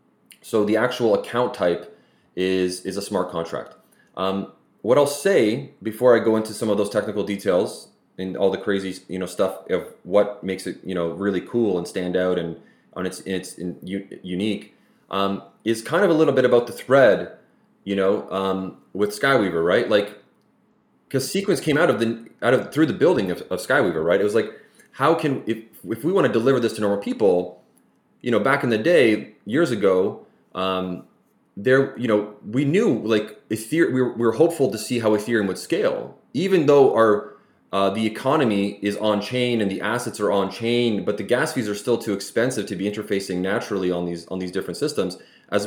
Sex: male